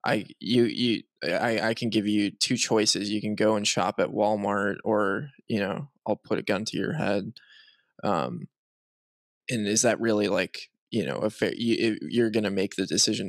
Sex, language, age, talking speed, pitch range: male, English, 20-39, 200 wpm, 105-130 Hz